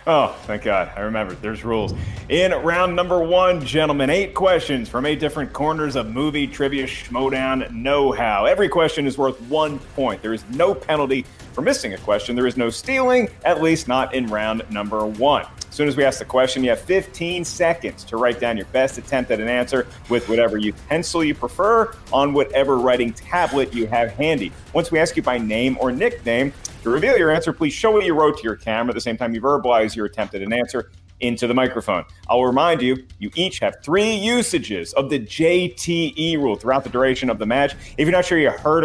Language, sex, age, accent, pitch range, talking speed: English, male, 30-49, American, 115-155 Hz, 215 wpm